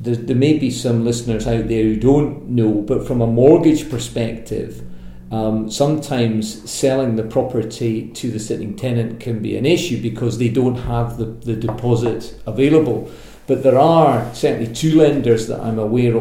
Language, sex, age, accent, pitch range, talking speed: English, male, 50-69, British, 115-130 Hz, 170 wpm